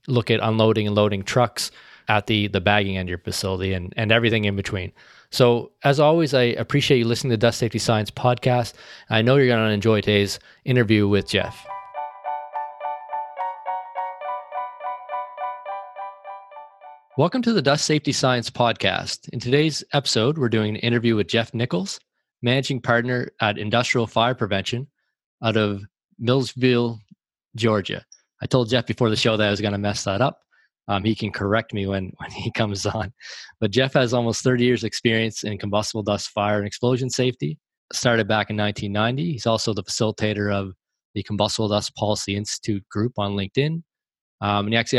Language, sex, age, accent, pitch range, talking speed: English, male, 20-39, American, 105-130 Hz, 170 wpm